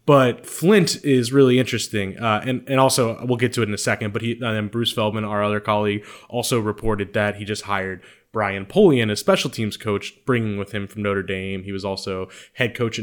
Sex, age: male, 20-39